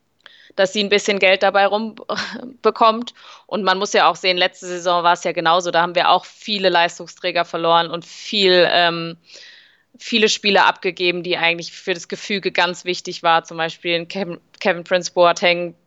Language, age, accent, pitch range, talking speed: German, 20-39, German, 170-195 Hz, 180 wpm